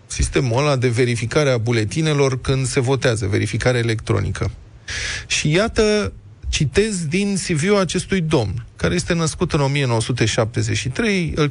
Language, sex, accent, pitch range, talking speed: Romanian, male, native, 125-170 Hz, 125 wpm